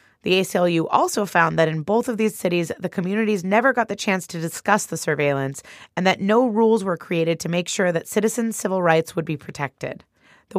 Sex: female